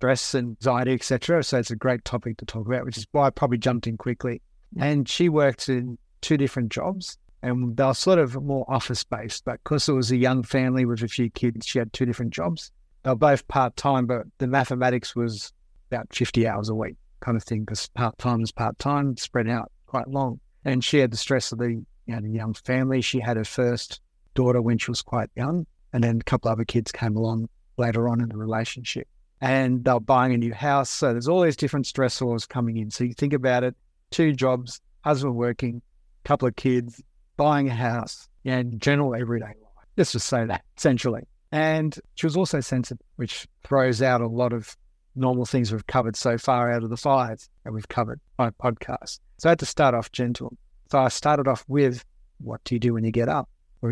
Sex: male